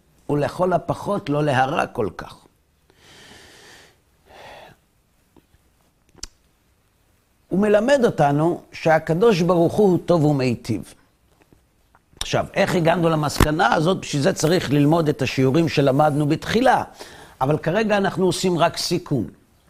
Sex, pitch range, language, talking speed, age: male, 120-175 Hz, Hebrew, 95 wpm, 60-79